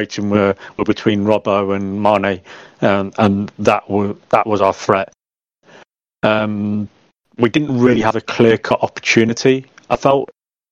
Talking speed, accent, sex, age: 135 wpm, British, male, 40-59